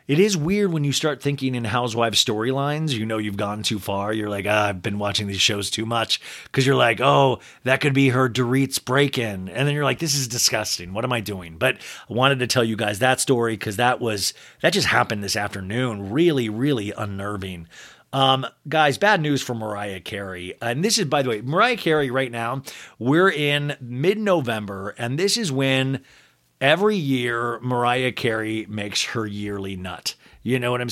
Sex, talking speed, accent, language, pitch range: male, 200 wpm, American, English, 115-155 Hz